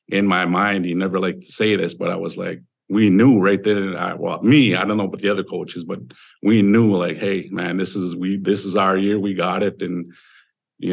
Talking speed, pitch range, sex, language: 240 wpm, 90-105 Hz, male, English